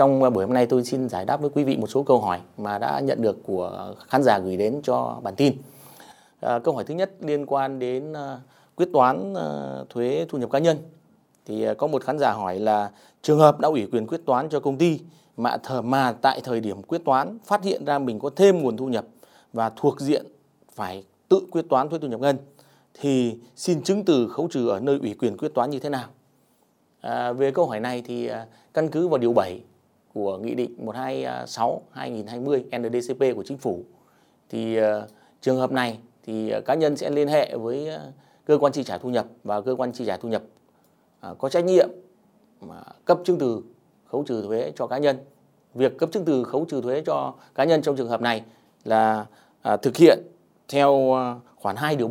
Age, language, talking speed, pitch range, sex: 20-39, Vietnamese, 205 wpm, 115-145 Hz, male